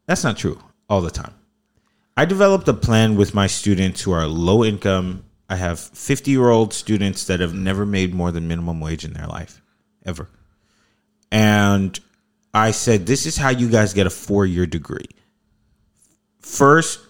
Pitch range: 90-110 Hz